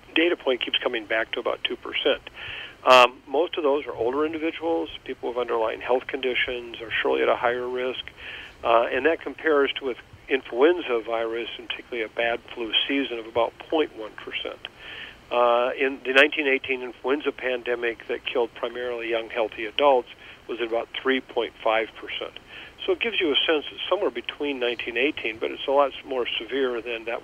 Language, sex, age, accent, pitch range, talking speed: English, male, 50-69, American, 115-140 Hz, 165 wpm